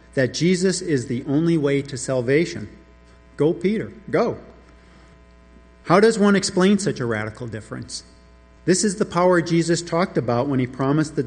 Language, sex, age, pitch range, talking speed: English, male, 50-69, 115-170 Hz, 160 wpm